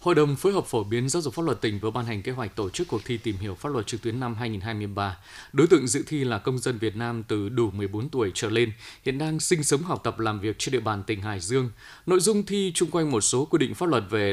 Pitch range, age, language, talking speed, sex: 115-160 Hz, 20-39, Vietnamese, 290 wpm, male